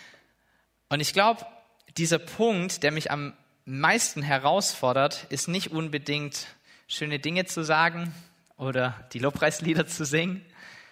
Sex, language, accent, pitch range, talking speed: male, German, German, 125-165 Hz, 120 wpm